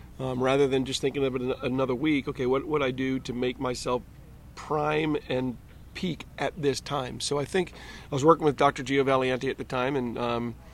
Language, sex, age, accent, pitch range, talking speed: English, male, 40-59, American, 125-145 Hz, 210 wpm